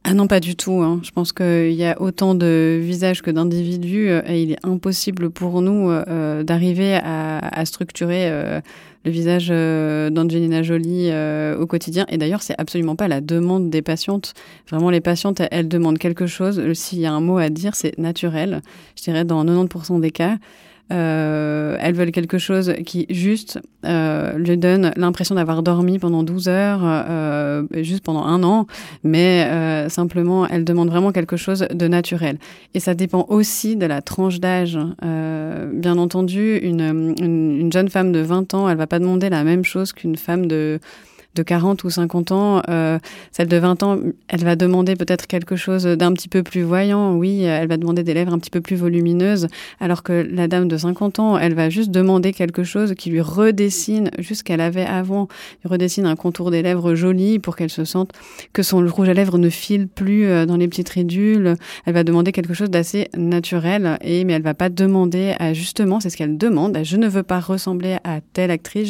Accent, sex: French, female